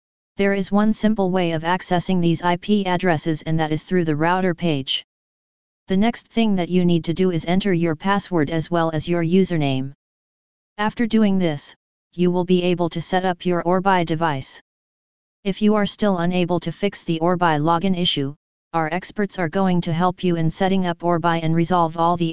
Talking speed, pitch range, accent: 195 wpm, 165-195 Hz, American